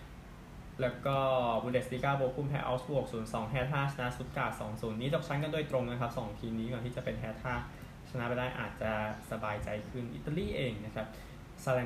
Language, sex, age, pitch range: Thai, male, 10-29, 115-135 Hz